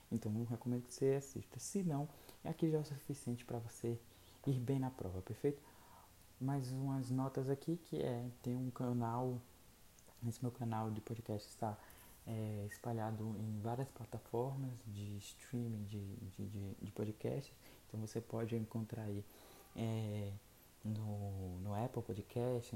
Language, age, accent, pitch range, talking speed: Portuguese, 20-39, Brazilian, 110-130 Hz, 155 wpm